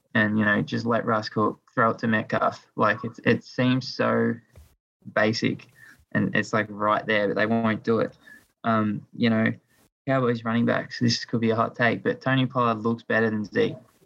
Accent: Australian